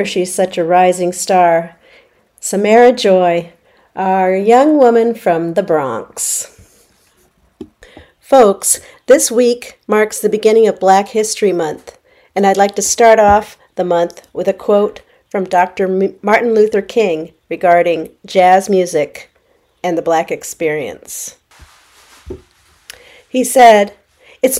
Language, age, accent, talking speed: English, 50-69, American, 120 wpm